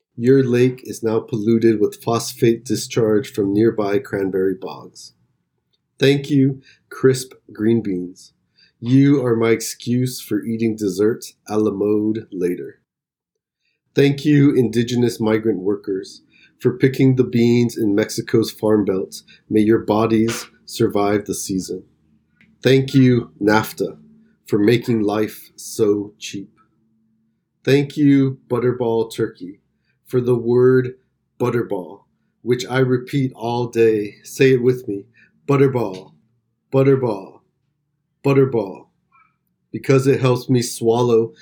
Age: 30-49